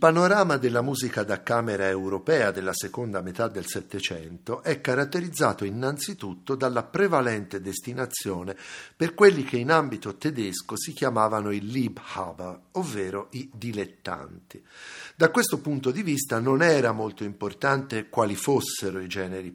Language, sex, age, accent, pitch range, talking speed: Italian, male, 50-69, native, 95-135 Hz, 130 wpm